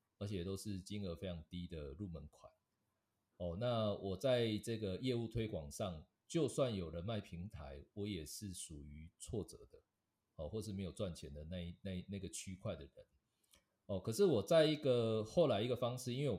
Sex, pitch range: male, 90-115 Hz